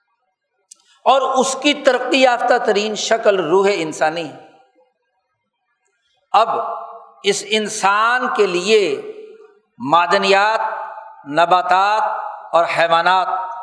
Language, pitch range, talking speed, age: Urdu, 185-285 Hz, 80 wpm, 60-79